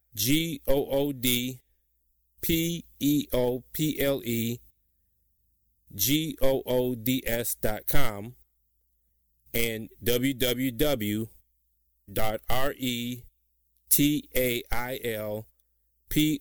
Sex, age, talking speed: male, 30-49, 100 wpm